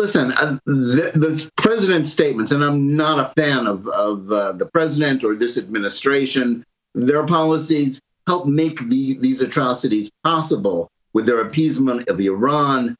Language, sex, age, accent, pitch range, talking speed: English, male, 50-69, American, 130-165 Hz, 145 wpm